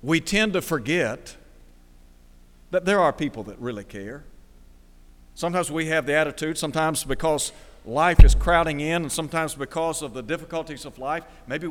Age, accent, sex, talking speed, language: 60-79, American, male, 160 wpm, English